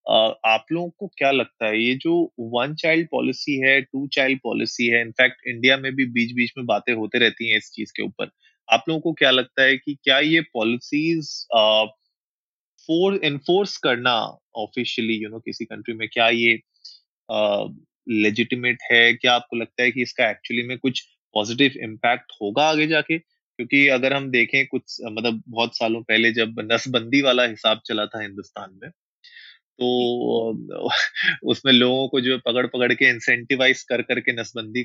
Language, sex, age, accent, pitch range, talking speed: Hindi, male, 20-39, native, 115-150 Hz, 170 wpm